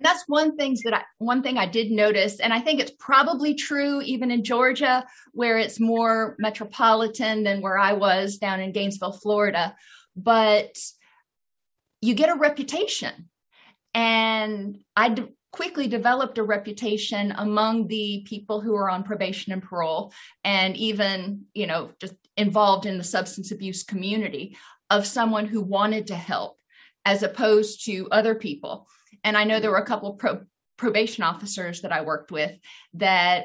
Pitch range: 195-230 Hz